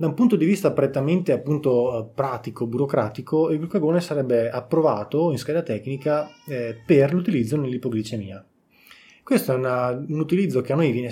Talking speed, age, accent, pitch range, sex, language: 150 wpm, 20-39, native, 115-140 Hz, male, Italian